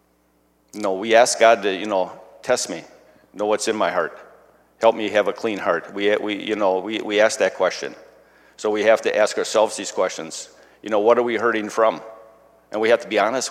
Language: English